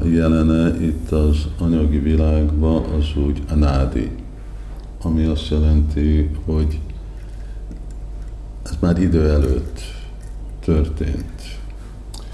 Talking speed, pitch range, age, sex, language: 90 wpm, 75-95 Hz, 50-69, male, Hungarian